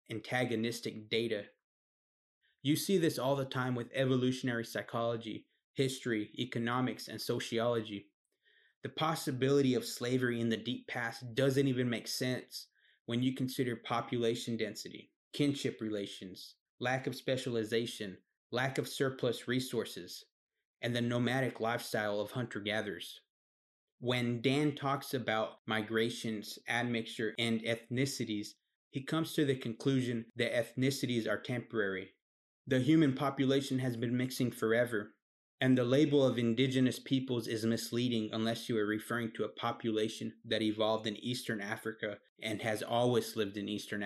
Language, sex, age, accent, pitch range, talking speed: English, male, 30-49, American, 110-130 Hz, 130 wpm